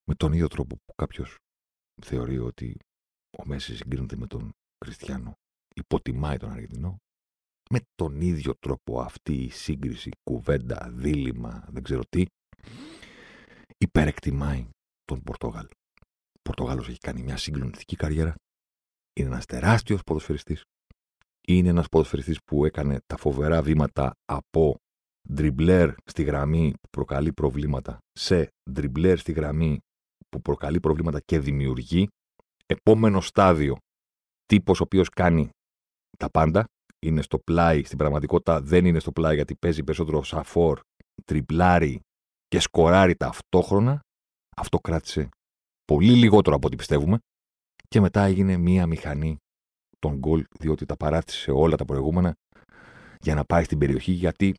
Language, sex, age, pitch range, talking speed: Greek, male, 50-69, 70-85 Hz, 130 wpm